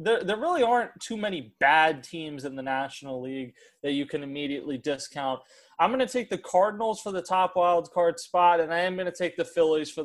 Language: English